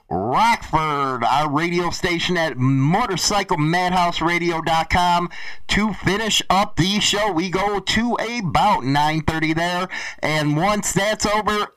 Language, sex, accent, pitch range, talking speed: English, male, American, 150-205 Hz, 105 wpm